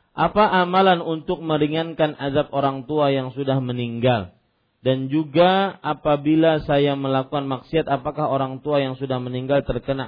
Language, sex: Malay, male